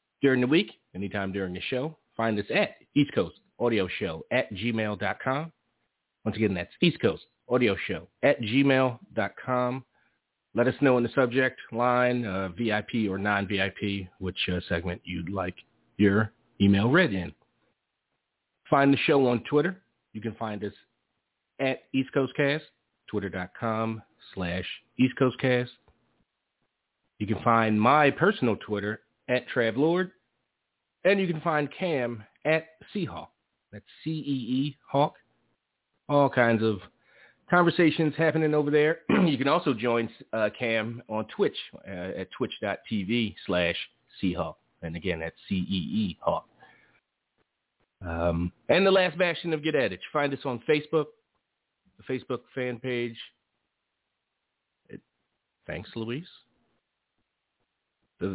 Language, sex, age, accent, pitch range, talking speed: English, male, 30-49, American, 105-145 Hz, 120 wpm